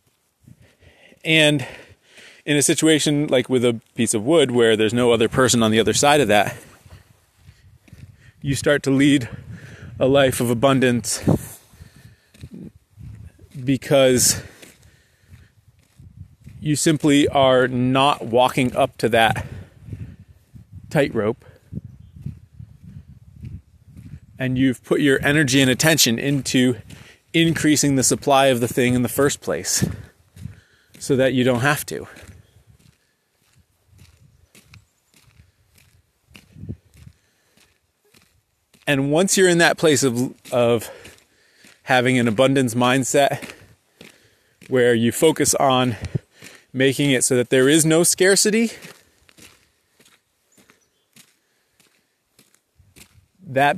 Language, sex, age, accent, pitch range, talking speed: English, male, 30-49, American, 115-140 Hz, 100 wpm